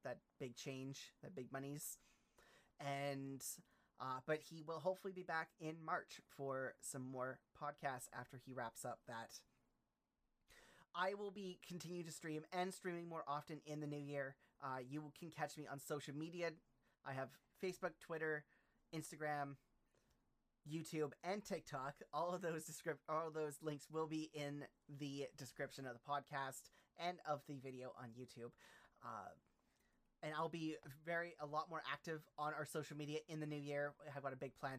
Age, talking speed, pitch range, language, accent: 30-49, 170 wpm, 135-160 Hz, English, American